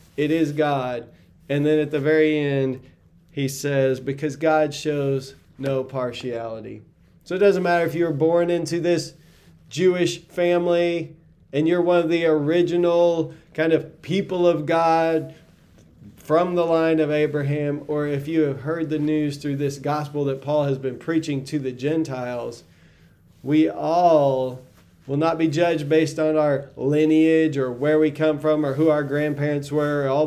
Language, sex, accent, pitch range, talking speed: English, male, American, 135-160 Hz, 165 wpm